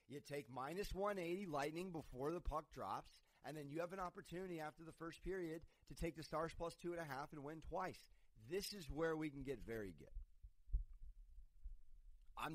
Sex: male